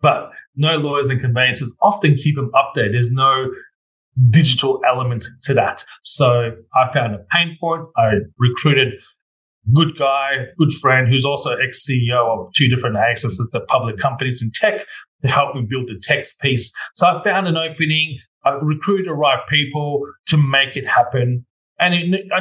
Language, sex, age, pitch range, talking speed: English, male, 30-49, 125-170 Hz, 170 wpm